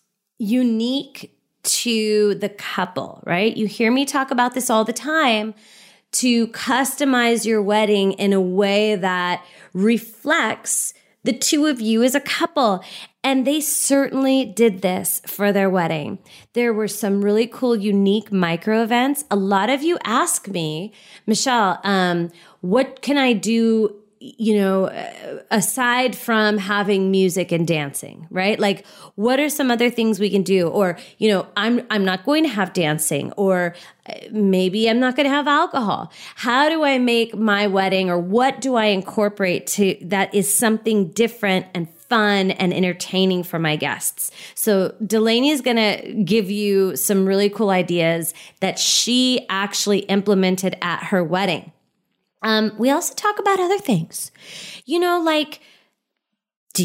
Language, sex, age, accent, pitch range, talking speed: English, female, 20-39, American, 195-255 Hz, 155 wpm